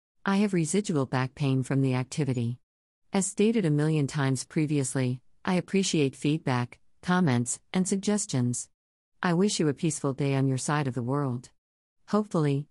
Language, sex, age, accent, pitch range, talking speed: English, female, 50-69, American, 125-165 Hz, 155 wpm